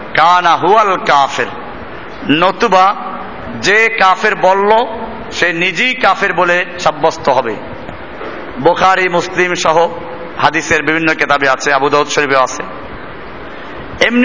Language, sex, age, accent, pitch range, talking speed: Bengali, male, 50-69, native, 170-220 Hz, 60 wpm